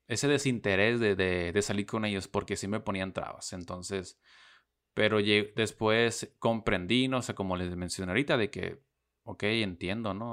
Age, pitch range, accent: 30-49, 85-110 Hz, Mexican